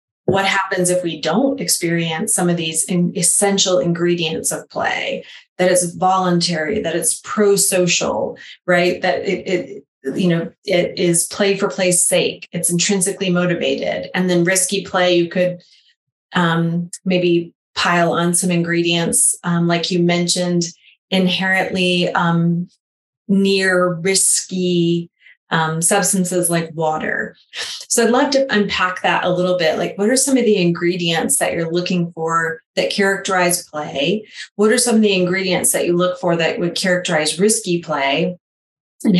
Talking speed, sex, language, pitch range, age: 150 wpm, female, English, 170-195 Hz, 30-49